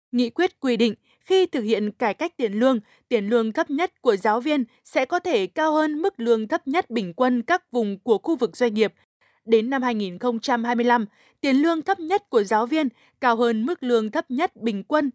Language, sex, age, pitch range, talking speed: Vietnamese, female, 20-39, 230-300 Hz, 215 wpm